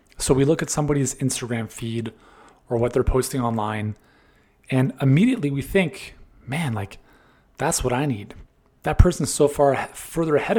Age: 30-49